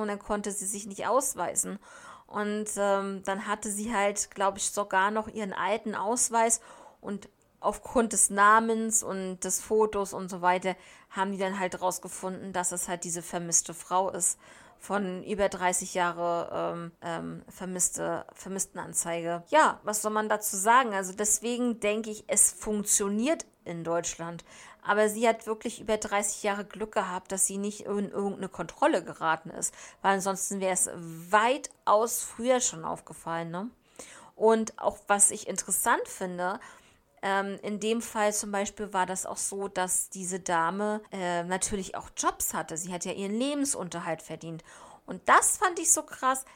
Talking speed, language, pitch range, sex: 160 wpm, German, 180-215 Hz, female